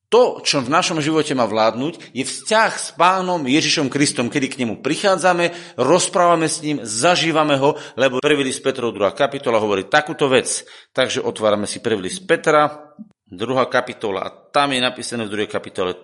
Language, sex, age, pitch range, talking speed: Slovak, male, 40-59, 135-180 Hz, 170 wpm